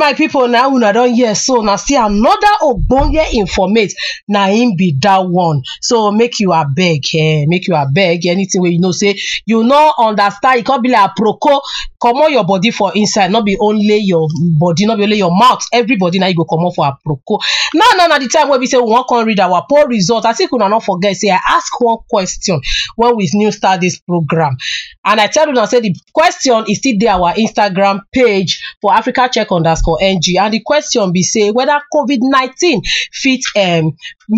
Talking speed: 230 wpm